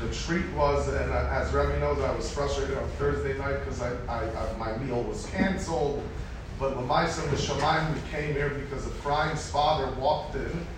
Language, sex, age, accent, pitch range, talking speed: English, male, 40-59, American, 110-145 Hz, 185 wpm